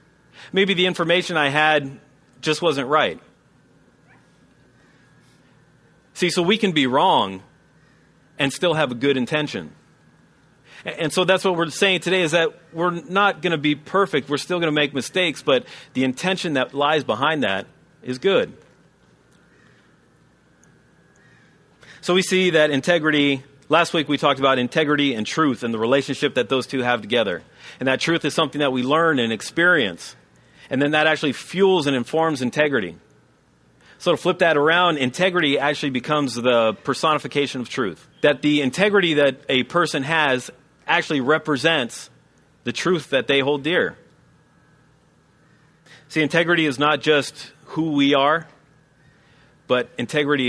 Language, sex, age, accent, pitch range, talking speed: English, male, 40-59, American, 135-165 Hz, 150 wpm